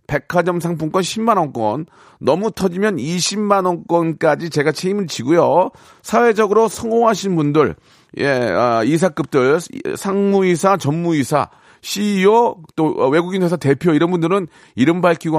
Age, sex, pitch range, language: 40-59, male, 135-195 Hz, Korean